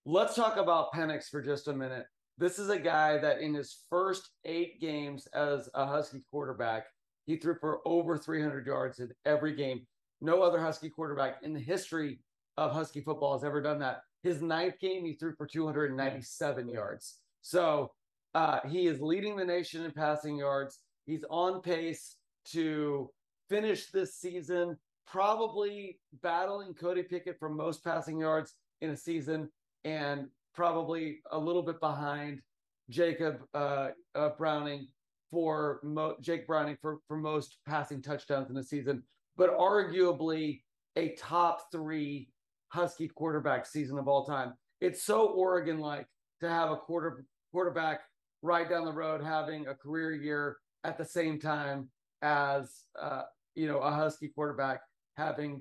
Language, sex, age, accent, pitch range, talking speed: English, male, 30-49, American, 145-170 Hz, 155 wpm